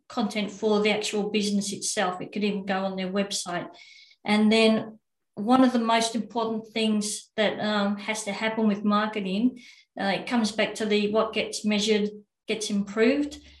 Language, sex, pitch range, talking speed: English, female, 200-220 Hz, 170 wpm